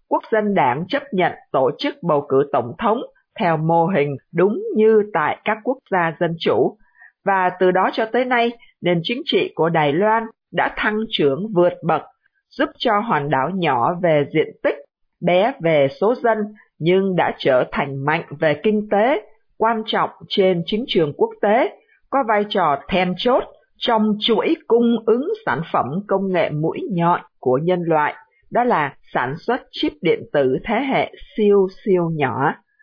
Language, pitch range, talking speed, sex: Vietnamese, 170-235 Hz, 175 wpm, female